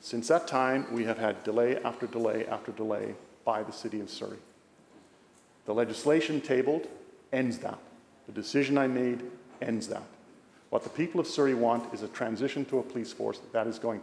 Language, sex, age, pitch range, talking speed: English, male, 50-69, 120-165 Hz, 185 wpm